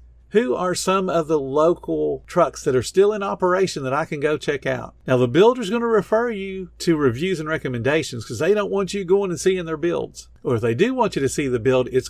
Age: 50-69